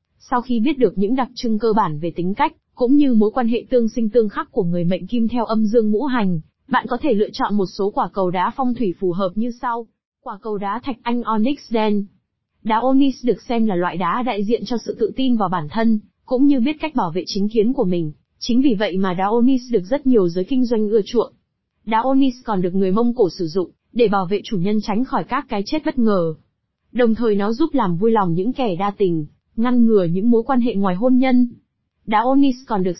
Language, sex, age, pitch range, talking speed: Vietnamese, female, 20-39, 200-245 Hz, 250 wpm